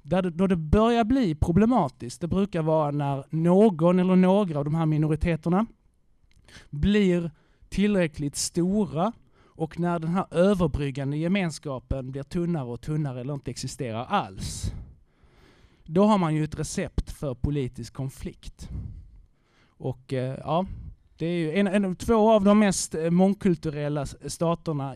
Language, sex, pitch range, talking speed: Swedish, male, 135-180 Hz, 140 wpm